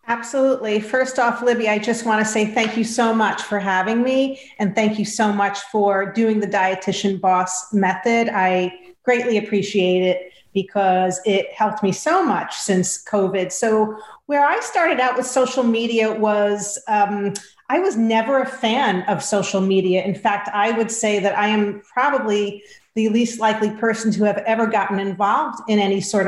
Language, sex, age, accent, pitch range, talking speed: English, female, 40-59, American, 195-230 Hz, 180 wpm